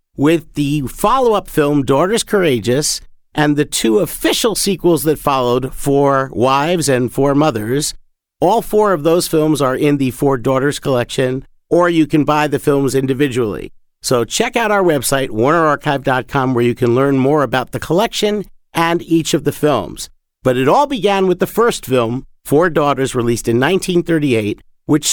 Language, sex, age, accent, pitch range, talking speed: English, male, 50-69, American, 125-165 Hz, 165 wpm